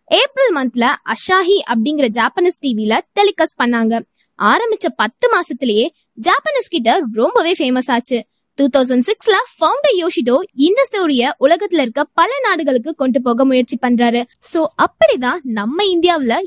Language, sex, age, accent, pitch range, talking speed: Tamil, female, 20-39, native, 240-345 Hz, 40 wpm